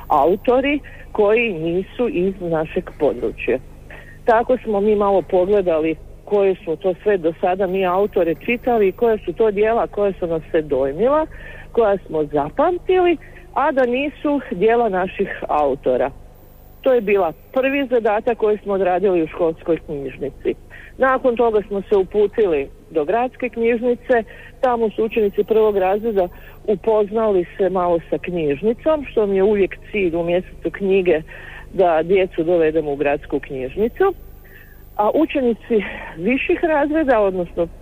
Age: 50-69